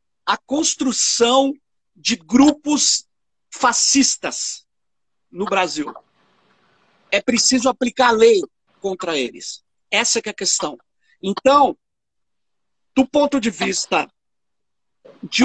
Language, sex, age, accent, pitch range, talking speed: Portuguese, male, 50-69, Brazilian, 195-255 Hz, 95 wpm